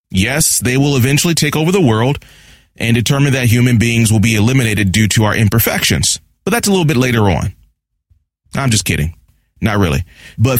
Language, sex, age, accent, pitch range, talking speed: English, male, 30-49, American, 100-135 Hz, 185 wpm